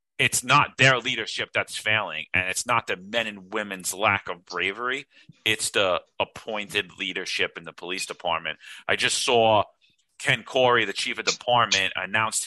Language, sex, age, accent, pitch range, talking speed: English, male, 40-59, American, 90-110 Hz, 165 wpm